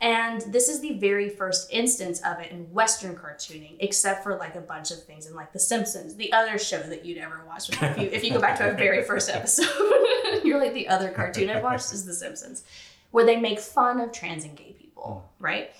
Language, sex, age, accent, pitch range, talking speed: English, female, 20-39, American, 180-265 Hz, 230 wpm